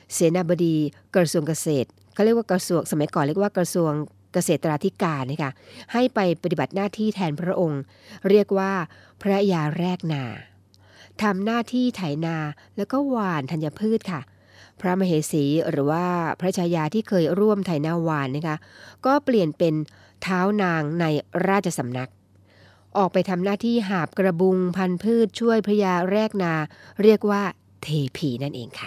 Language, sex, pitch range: Thai, female, 145-195 Hz